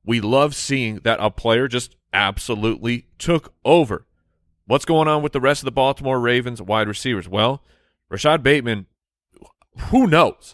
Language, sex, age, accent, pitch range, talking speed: English, male, 30-49, American, 105-135 Hz, 155 wpm